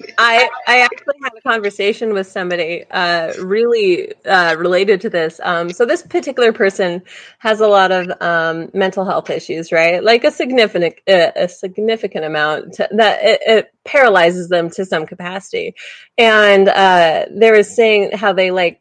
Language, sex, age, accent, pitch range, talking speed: English, female, 20-39, American, 190-265 Hz, 165 wpm